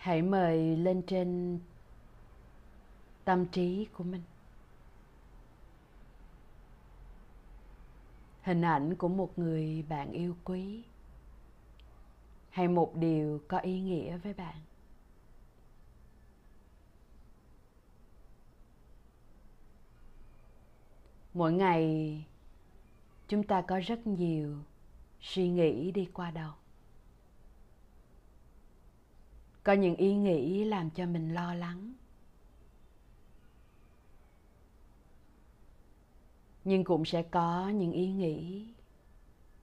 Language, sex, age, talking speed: Vietnamese, female, 20-39, 80 wpm